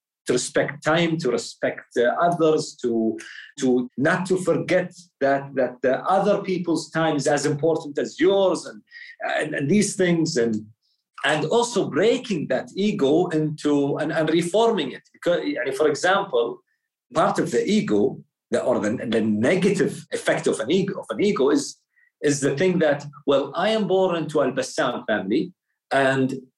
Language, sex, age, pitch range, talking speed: English, male, 40-59, 150-200 Hz, 165 wpm